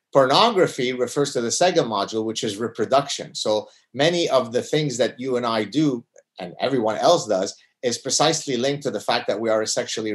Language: English